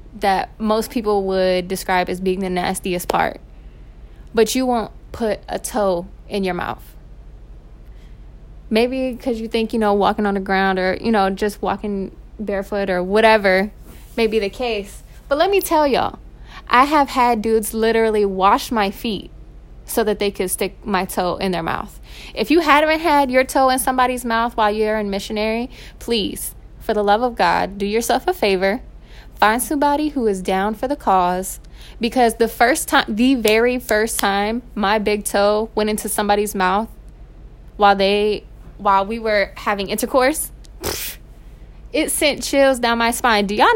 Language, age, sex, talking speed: English, 20-39, female, 170 wpm